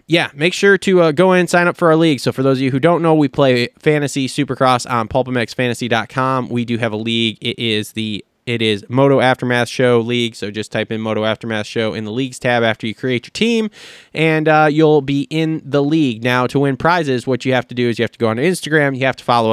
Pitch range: 120-145 Hz